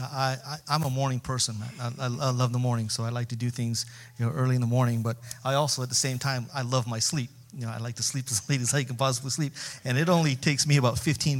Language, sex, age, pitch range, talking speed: English, male, 40-59, 120-135 Hz, 290 wpm